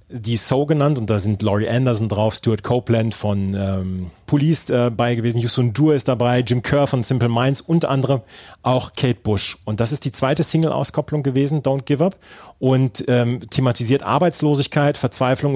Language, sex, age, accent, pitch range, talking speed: German, male, 40-59, German, 115-140 Hz, 175 wpm